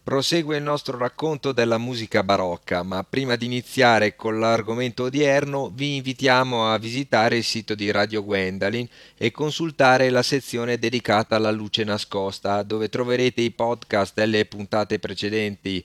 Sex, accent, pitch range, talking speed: male, native, 105-135 Hz, 145 wpm